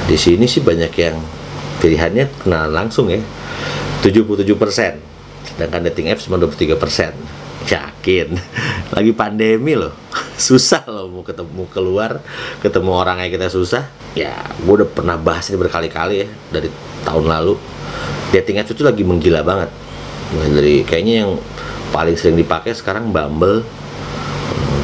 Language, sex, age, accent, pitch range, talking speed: Indonesian, male, 30-49, native, 80-105 Hz, 140 wpm